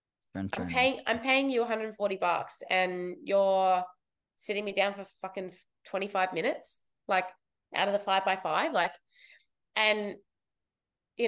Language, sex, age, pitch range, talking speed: English, female, 20-39, 185-225 Hz, 140 wpm